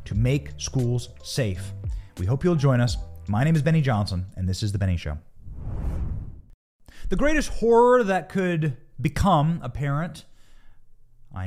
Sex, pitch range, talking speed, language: male, 105-165 Hz, 150 wpm, English